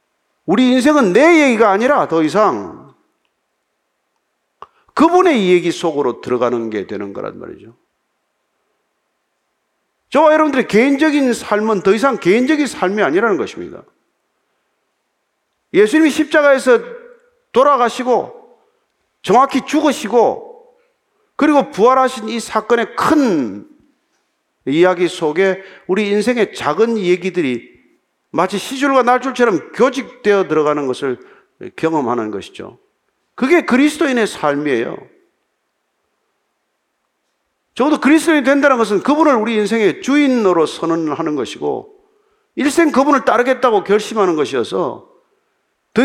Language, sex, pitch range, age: Korean, male, 210-320 Hz, 40-59